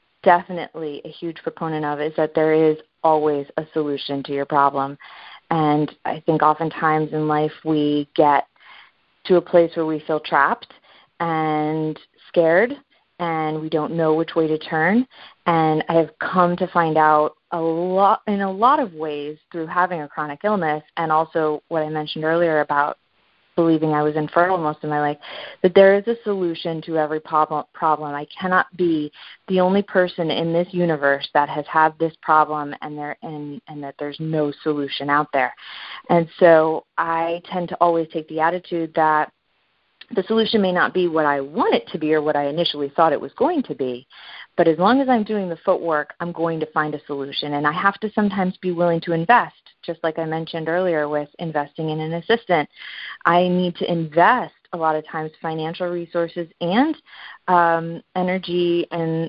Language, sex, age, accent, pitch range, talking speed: English, female, 30-49, American, 155-175 Hz, 185 wpm